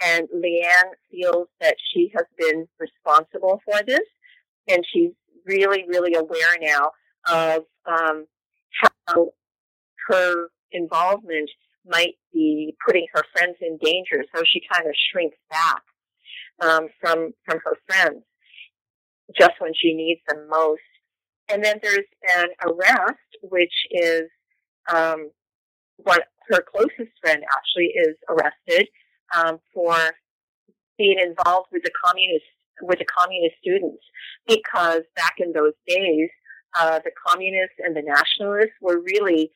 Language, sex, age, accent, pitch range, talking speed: English, female, 40-59, American, 160-205 Hz, 125 wpm